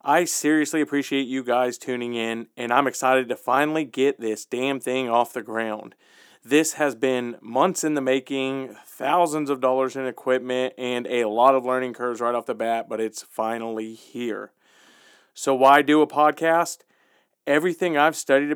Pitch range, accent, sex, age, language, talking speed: 125-150 Hz, American, male, 40-59, English, 170 wpm